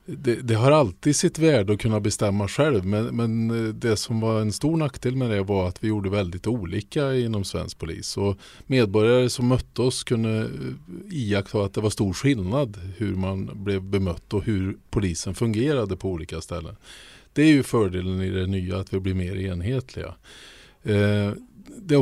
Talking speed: 180 wpm